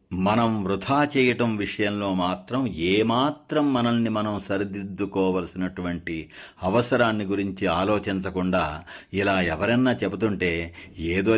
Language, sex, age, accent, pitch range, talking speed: Telugu, male, 50-69, native, 95-120 Hz, 90 wpm